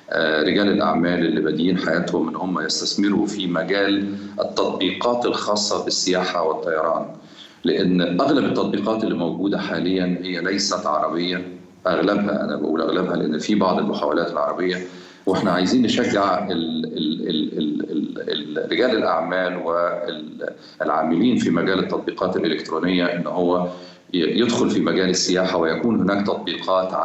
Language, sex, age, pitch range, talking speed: Arabic, male, 40-59, 85-95 Hz, 110 wpm